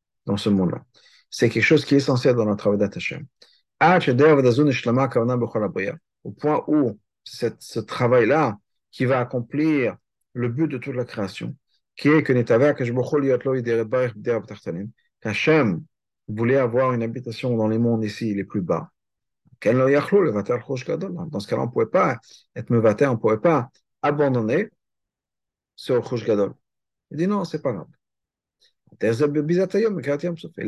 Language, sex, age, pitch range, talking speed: French, male, 50-69, 120-150 Hz, 120 wpm